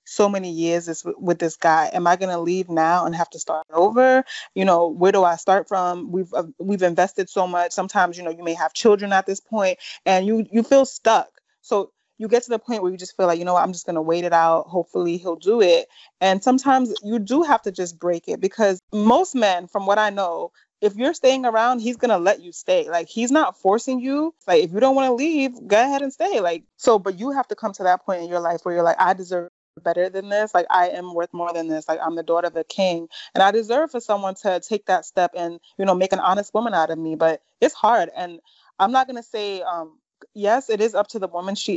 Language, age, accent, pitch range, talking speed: English, 20-39, American, 170-225 Hz, 260 wpm